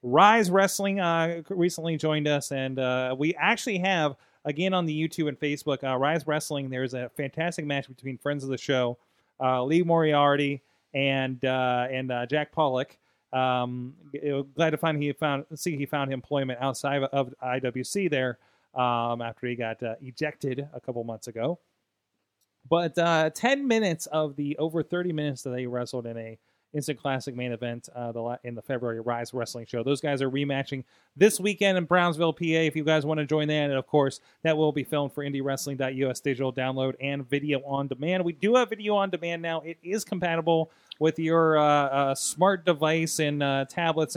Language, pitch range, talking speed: English, 130-160 Hz, 185 wpm